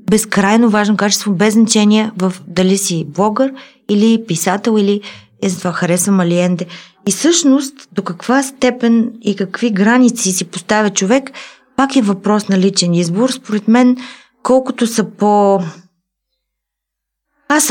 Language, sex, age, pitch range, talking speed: Bulgarian, female, 20-39, 190-240 Hz, 130 wpm